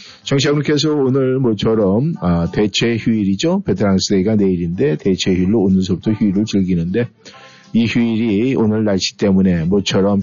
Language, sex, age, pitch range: Korean, male, 50-69, 100-140 Hz